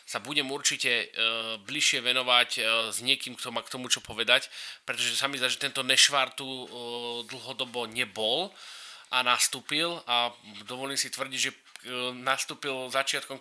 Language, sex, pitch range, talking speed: Slovak, male, 115-135 Hz, 160 wpm